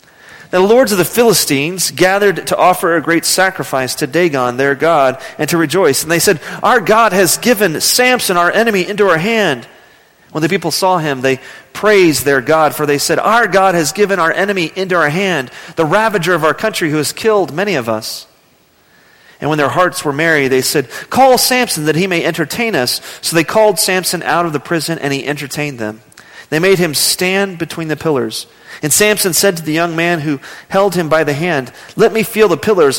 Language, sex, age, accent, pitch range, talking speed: English, male, 40-59, American, 150-195 Hz, 210 wpm